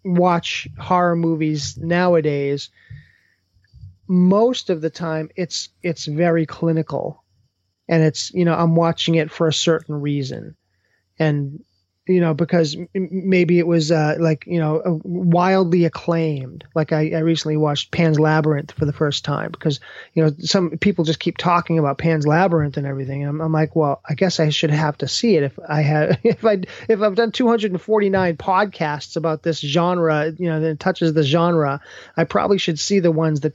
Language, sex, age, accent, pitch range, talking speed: English, male, 30-49, American, 150-175 Hz, 175 wpm